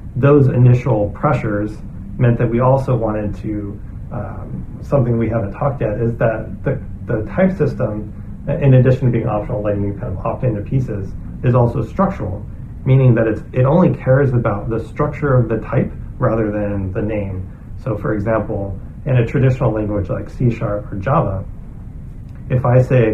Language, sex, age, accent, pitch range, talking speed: English, male, 30-49, American, 105-130 Hz, 175 wpm